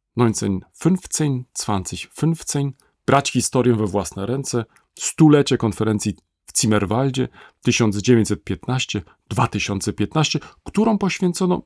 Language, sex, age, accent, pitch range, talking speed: Polish, male, 40-59, native, 110-155 Hz, 70 wpm